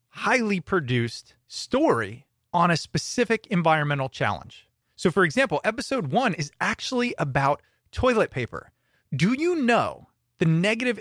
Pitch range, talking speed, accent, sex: 125-190 Hz, 125 wpm, American, male